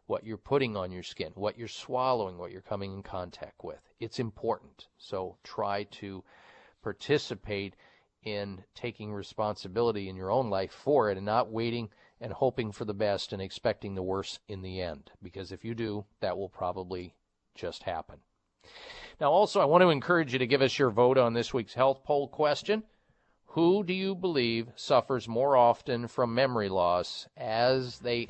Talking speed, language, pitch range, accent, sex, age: 180 wpm, English, 100-130 Hz, American, male, 40-59